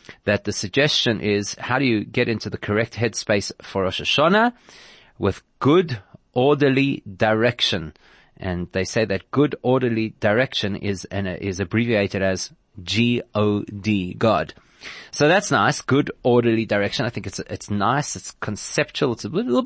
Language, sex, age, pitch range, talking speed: English, male, 30-49, 100-125 Hz, 160 wpm